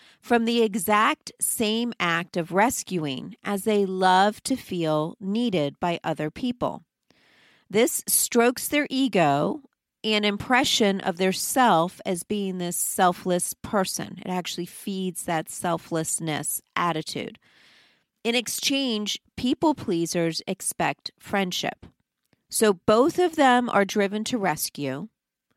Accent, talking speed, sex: American, 115 wpm, female